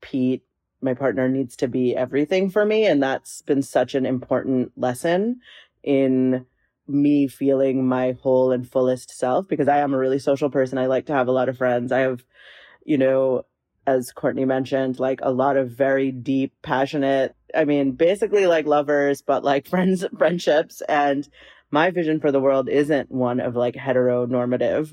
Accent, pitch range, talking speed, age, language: American, 125-140 Hz, 175 wpm, 30-49, English